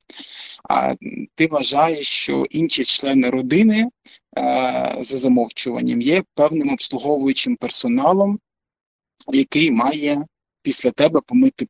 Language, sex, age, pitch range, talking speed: Ukrainian, male, 20-39, 125-200 Hz, 90 wpm